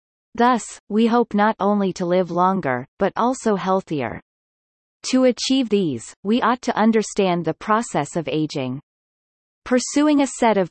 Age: 30-49